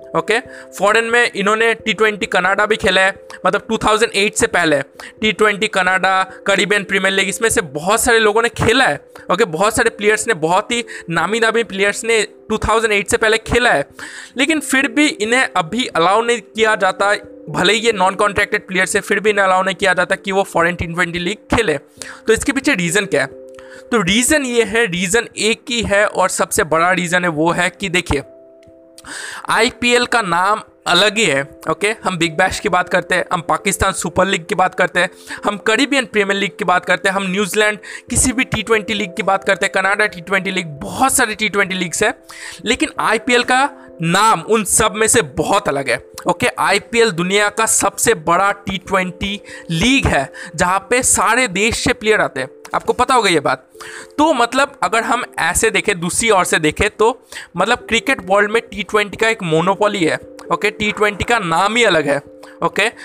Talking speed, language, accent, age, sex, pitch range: 200 wpm, Hindi, native, 20-39, male, 185-225 Hz